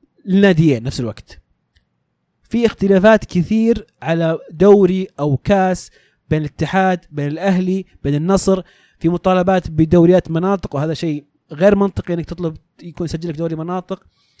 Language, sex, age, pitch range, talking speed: Arabic, male, 20-39, 150-190 Hz, 130 wpm